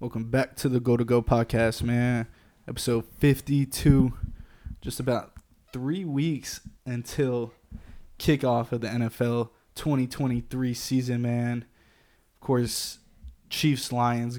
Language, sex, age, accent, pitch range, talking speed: English, male, 20-39, American, 115-130 Hz, 110 wpm